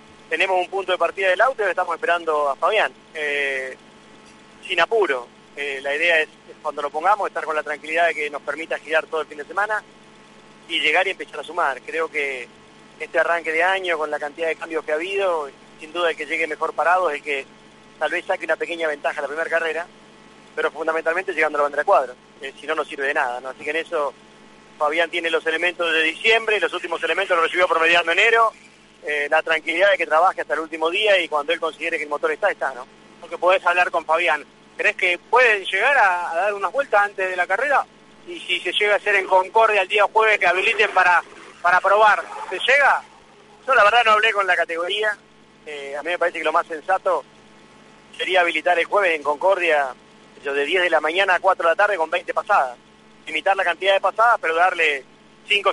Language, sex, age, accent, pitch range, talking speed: Spanish, male, 30-49, Argentinian, 155-195 Hz, 225 wpm